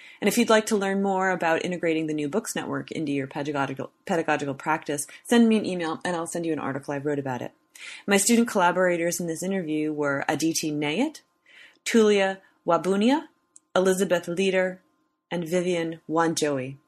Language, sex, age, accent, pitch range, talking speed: English, female, 30-49, American, 155-195 Hz, 170 wpm